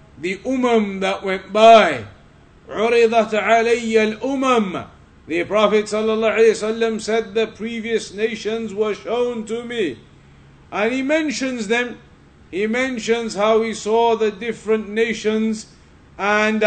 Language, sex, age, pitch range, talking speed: English, male, 50-69, 200-240 Hz, 110 wpm